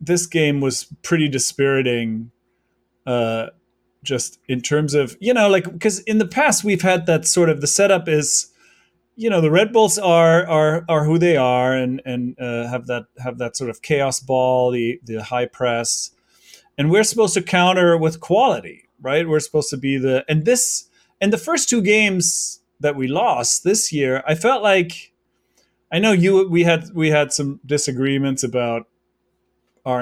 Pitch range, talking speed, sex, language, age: 130-180 Hz, 180 wpm, male, English, 30-49